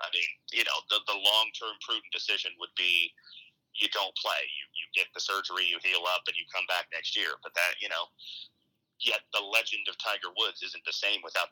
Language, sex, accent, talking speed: English, male, American, 225 wpm